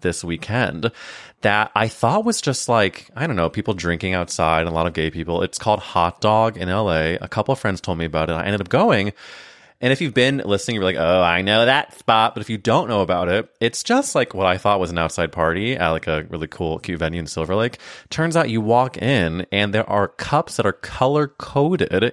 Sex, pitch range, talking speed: male, 85-125 Hz, 240 wpm